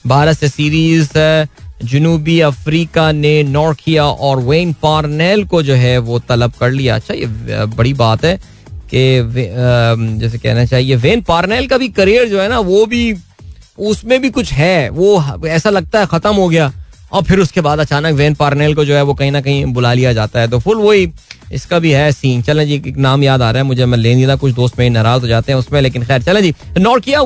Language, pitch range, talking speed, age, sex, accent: Hindi, 130-175 Hz, 135 wpm, 20-39, male, native